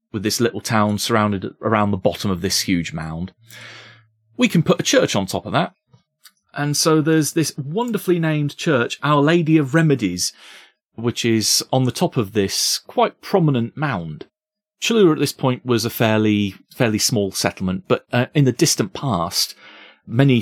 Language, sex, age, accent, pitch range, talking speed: English, male, 30-49, British, 100-135 Hz, 175 wpm